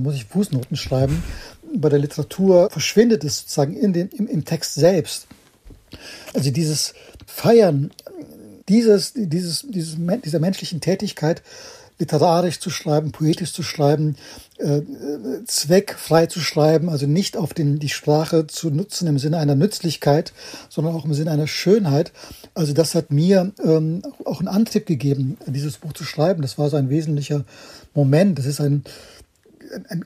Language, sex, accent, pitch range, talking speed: German, male, German, 150-200 Hz, 140 wpm